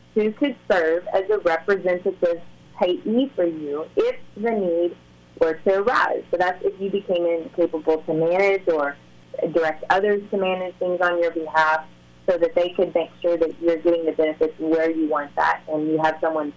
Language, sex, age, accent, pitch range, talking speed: English, female, 30-49, American, 160-190 Hz, 185 wpm